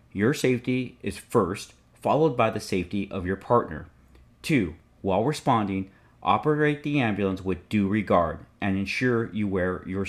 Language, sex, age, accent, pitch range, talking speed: English, male, 40-59, American, 95-120 Hz, 150 wpm